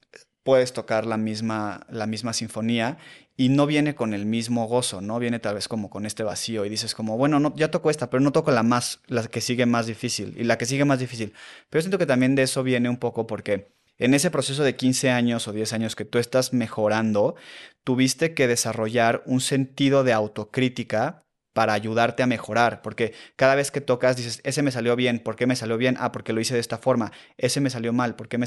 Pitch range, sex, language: 115-135 Hz, male, Spanish